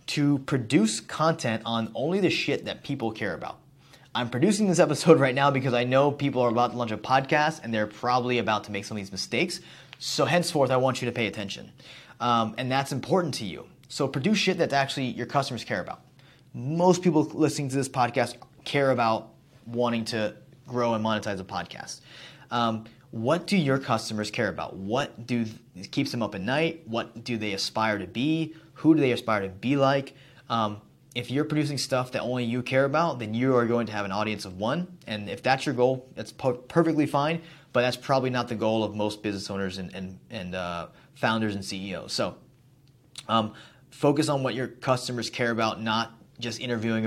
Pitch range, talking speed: 110-140 Hz, 205 wpm